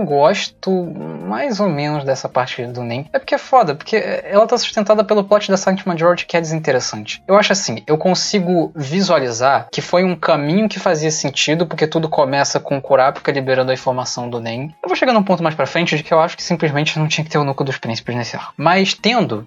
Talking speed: 230 wpm